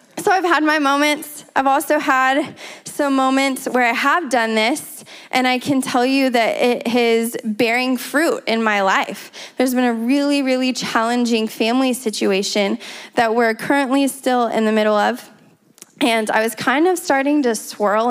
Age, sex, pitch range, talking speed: 20-39, female, 215-260 Hz, 170 wpm